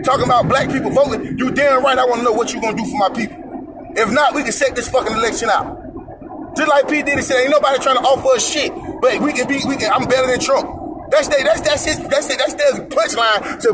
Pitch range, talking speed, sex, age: 250-310 Hz, 260 wpm, male, 30-49